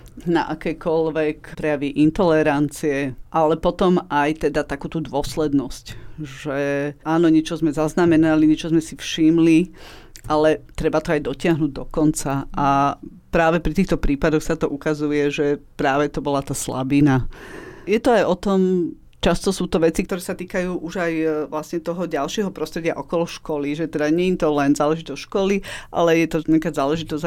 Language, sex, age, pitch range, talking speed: Slovak, female, 40-59, 145-170 Hz, 160 wpm